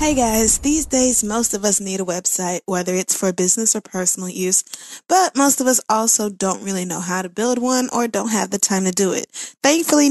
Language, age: English, 20-39